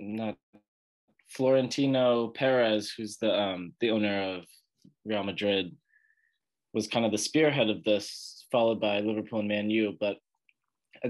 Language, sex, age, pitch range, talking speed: English, male, 20-39, 105-125 Hz, 140 wpm